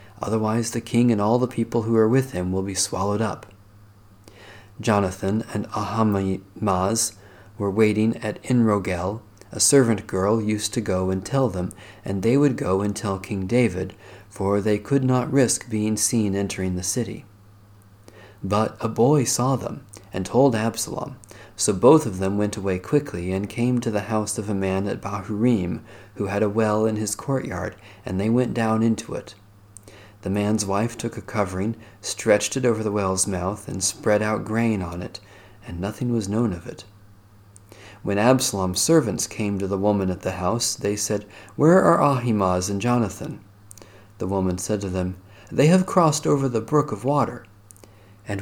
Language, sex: English, male